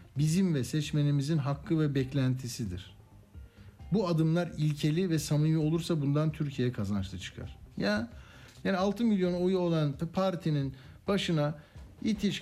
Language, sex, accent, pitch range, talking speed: Turkish, male, native, 140-180 Hz, 120 wpm